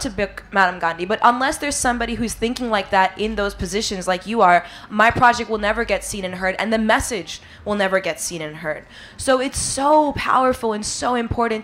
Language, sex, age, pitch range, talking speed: English, female, 20-39, 185-225 Hz, 215 wpm